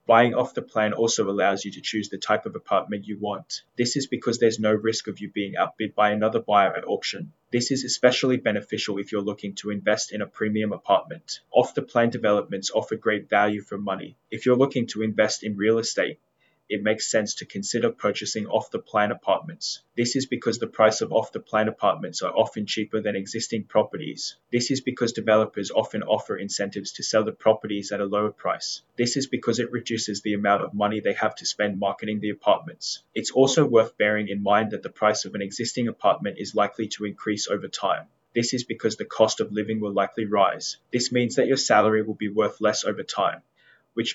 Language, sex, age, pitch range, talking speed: English, male, 20-39, 105-120 Hz, 210 wpm